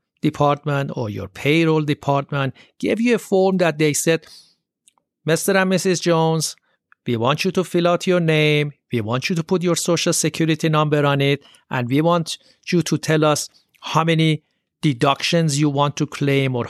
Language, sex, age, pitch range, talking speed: English, male, 60-79, 135-190 Hz, 180 wpm